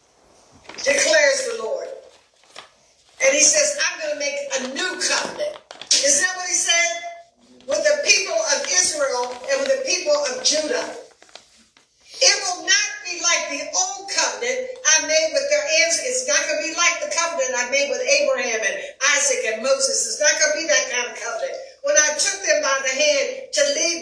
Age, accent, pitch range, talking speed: 60-79, American, 295-390 Hz, 190 wpm